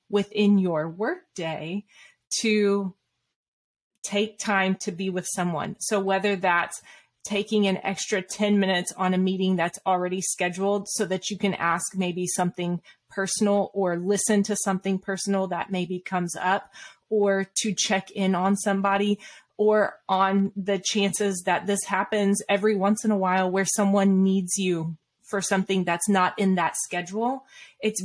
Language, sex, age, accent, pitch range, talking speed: English, female, 20-39, American, 180-205 Hz, 155 wpm